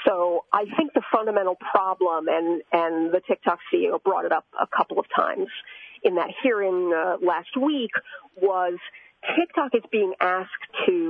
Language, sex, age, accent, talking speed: English, female, 40-59, American, 160 wpm